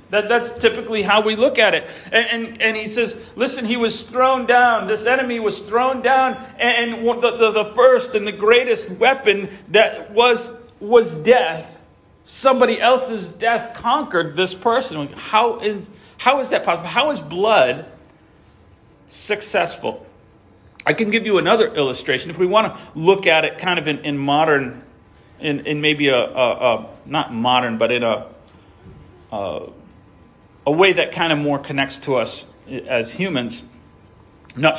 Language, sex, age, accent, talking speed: English, male, 40-59, American, 165 wpm